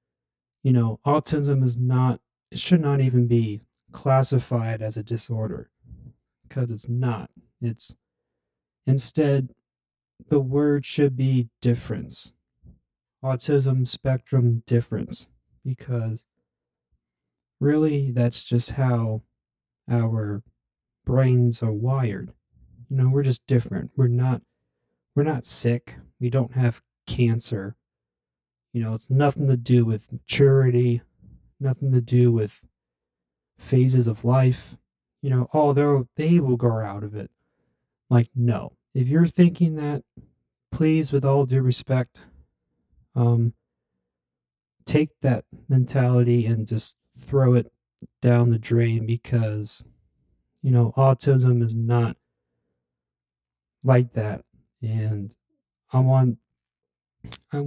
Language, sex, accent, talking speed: English, male, American, 115 wpm